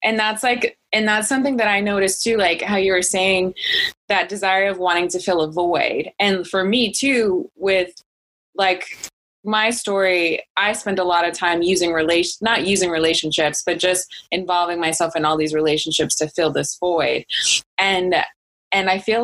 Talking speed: 180 wpm